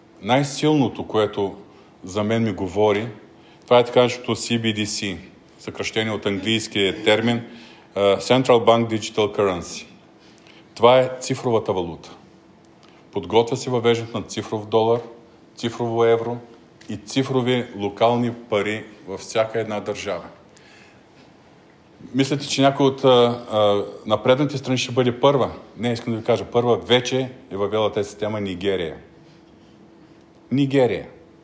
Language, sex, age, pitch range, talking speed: Bulgarian, male, 40-59, 105-125 Hz, 115 wpm